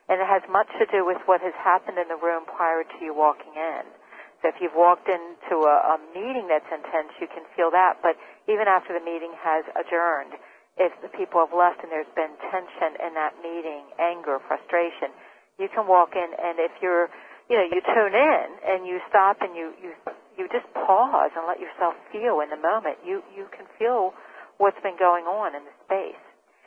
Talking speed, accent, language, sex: 205 wpm, American, English, female